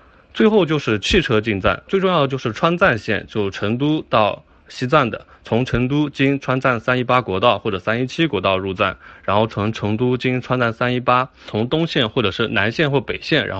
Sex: male